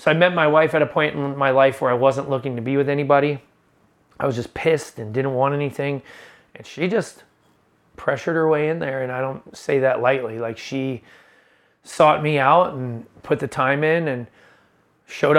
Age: 30-49